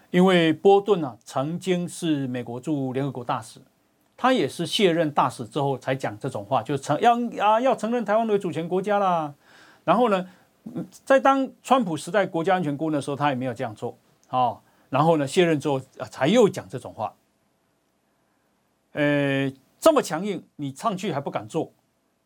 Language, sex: Chinese, male